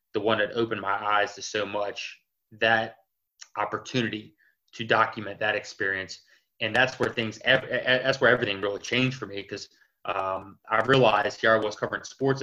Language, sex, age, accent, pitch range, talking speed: English, male, 20-39, American, 110-130 Hz, 170 wpm